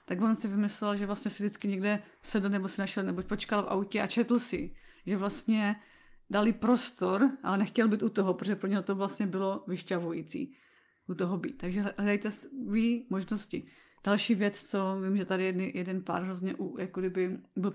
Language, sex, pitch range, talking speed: Czech, female, 190-230 Hz, 195 wpm